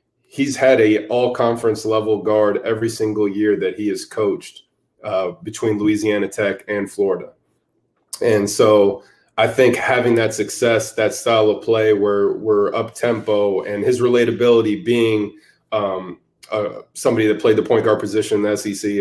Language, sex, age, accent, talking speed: English, male, 20-39, American, 160 wpm